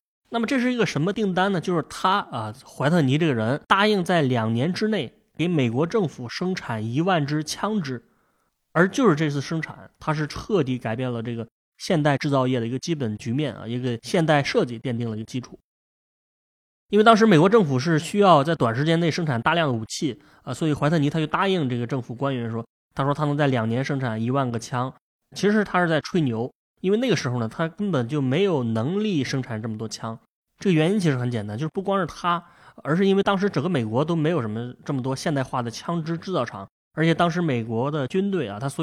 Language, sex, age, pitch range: Chinese, male, 20-39, 125-180 Hz